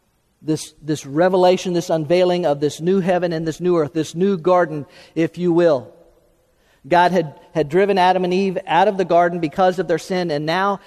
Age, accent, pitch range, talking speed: 50-69, American, 165-200 Hz, 200 wpm